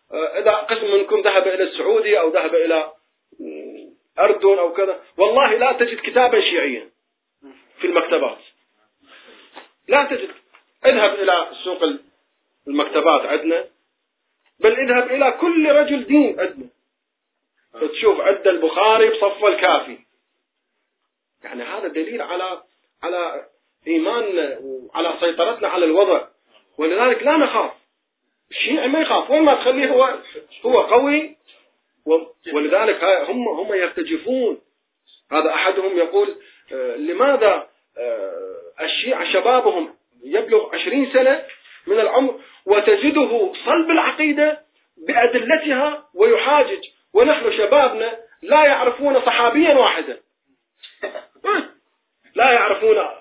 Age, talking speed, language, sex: 30-49, 100 wpm, Arabic, male